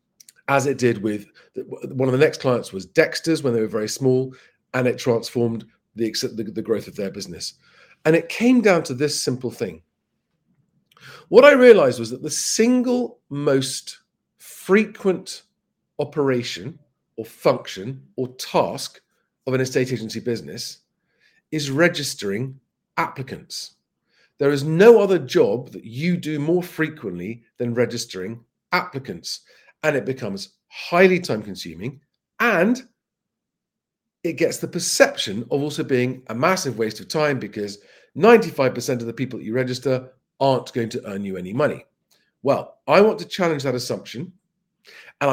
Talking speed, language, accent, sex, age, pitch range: 145 wpm, English, British, male, 40-59, 120-175 Hz